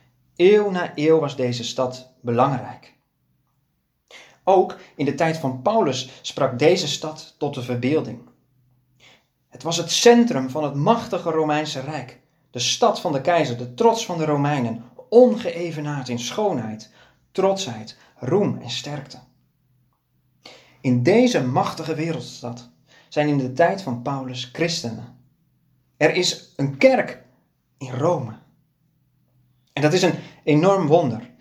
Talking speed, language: 130 wpm, Dutch